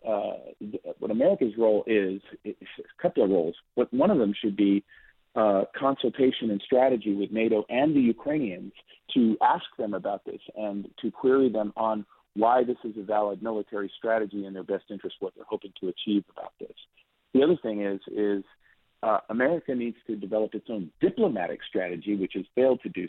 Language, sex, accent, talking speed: English, male, American, 185 wpm